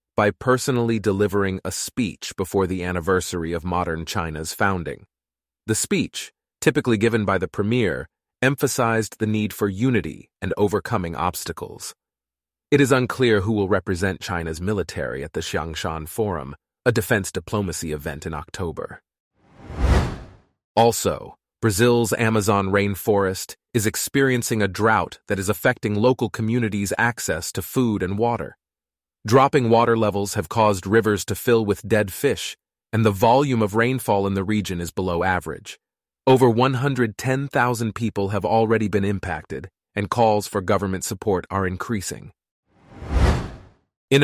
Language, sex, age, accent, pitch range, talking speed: English, male, 30-49, American, 95-120 Hz, 135 wpm